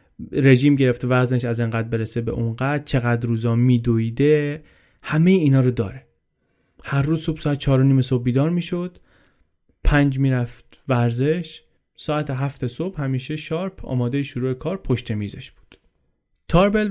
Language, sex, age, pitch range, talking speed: Persian, male, 30-49, 120-150 Hz, 145 wpm